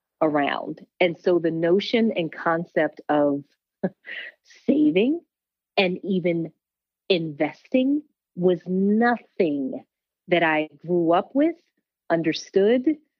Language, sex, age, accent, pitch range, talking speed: English, female, 40-59, American, 155-195 Hz, 90 wpm